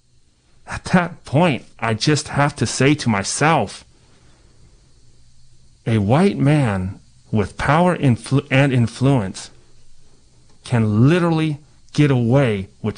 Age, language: 30-49, English